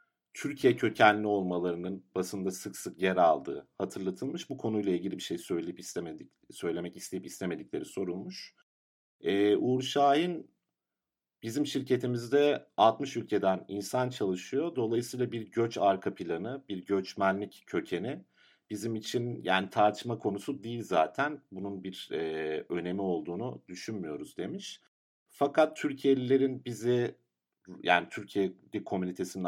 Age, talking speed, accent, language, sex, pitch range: 50-69, 115 wpm, native, Turkish, male, 95-135 Hz